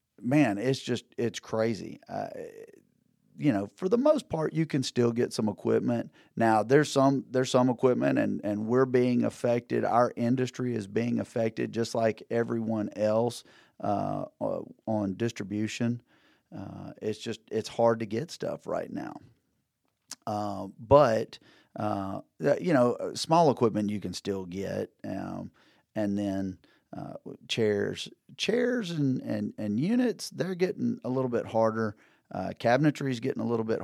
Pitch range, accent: 105-130 Hz, American